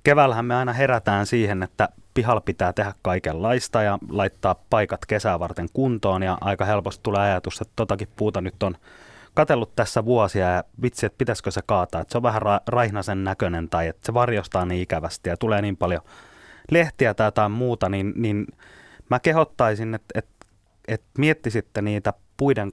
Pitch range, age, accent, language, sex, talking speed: 90-115 Hz, 30-49, native, Finnish, male, 170 wpm